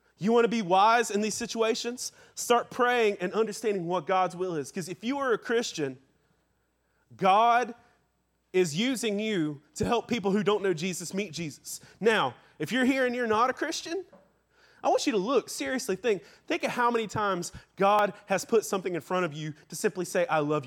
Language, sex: English, male